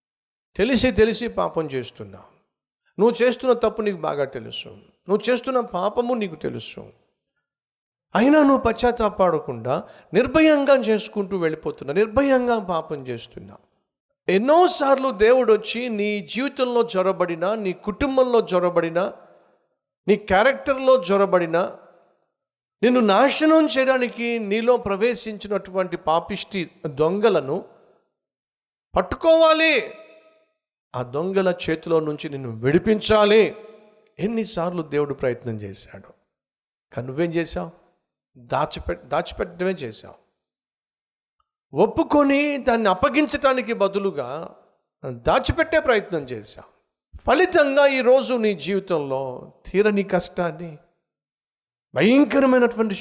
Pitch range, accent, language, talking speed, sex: 175-255 Hz, native, Telugu, 85 wpm, male